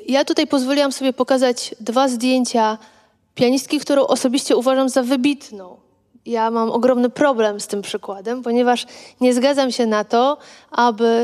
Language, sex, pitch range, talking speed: Polish, female, 220-265 Hz, 145 wpm